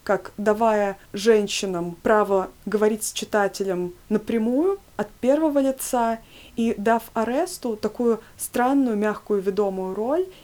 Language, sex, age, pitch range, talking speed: Russian, female, 20-39, 200-235 Hz, 110 wpm